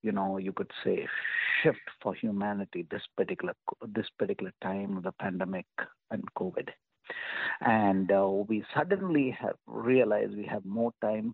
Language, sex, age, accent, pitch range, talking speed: English, male, 50-69, Indian, 105-165 Hz, 150 wpm